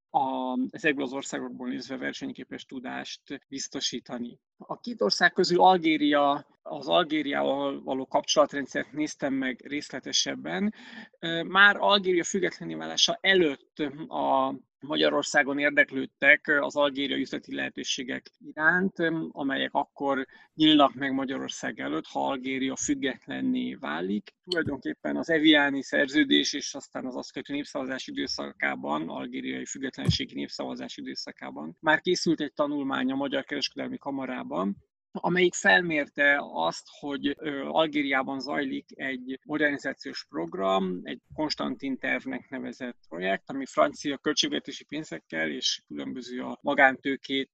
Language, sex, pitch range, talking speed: Hungarian, male, 135-200 Hz, 110 wpm